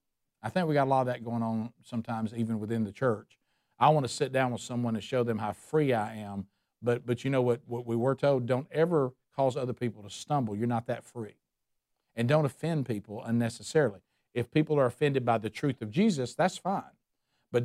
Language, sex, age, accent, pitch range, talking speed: English, male, 50-69, American, 105-140 Hz, 225 wpm